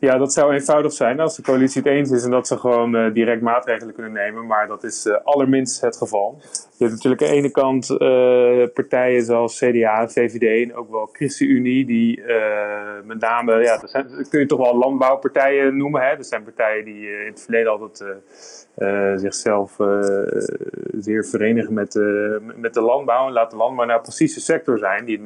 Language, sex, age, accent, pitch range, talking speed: Dutch, male, 30-49, Dutch, 110-130 Hz, 210 wpm